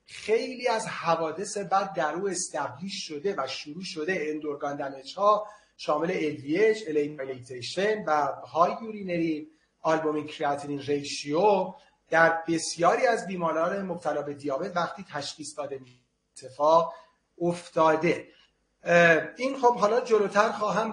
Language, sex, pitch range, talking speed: Persian, male, 155-205 Hz, 110 wpm